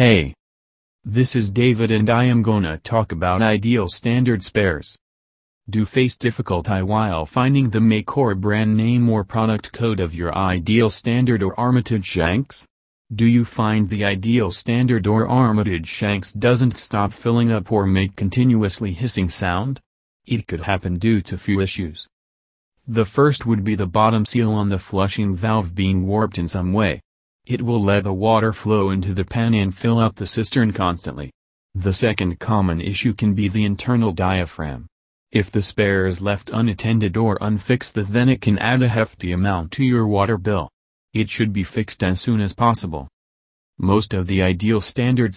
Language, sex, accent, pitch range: English, male, American, 95-115 Hz